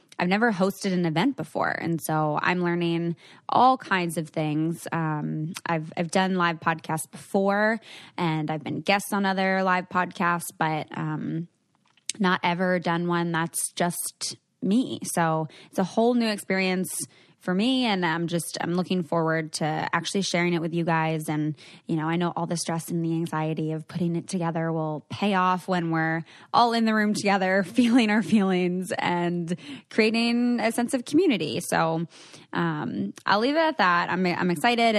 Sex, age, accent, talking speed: female, 20-39, American, 175 wpm